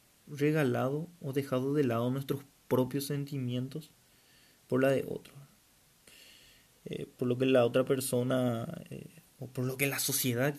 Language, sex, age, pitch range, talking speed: Spanish, male, 20-39, 135-175 Hz, 145 wpm